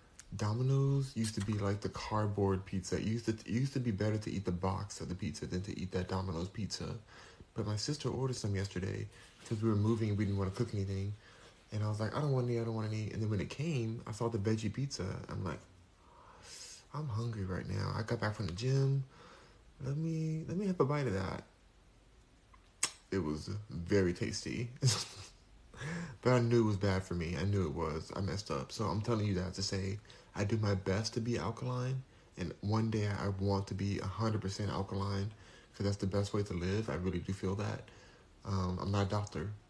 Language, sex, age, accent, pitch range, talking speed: English, male, 30-49, American, 95-115 Hz, 225 wpm